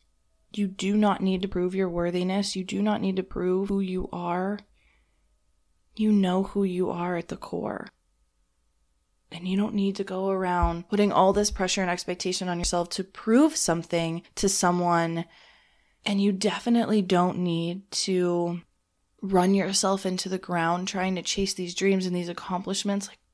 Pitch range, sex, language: 175-205 Hz, female, English